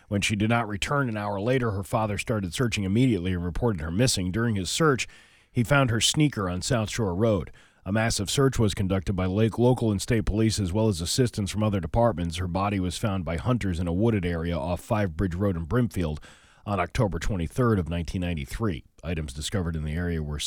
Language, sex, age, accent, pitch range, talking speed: English, male, 40-59, American, 90-120 Hz, 215 wpm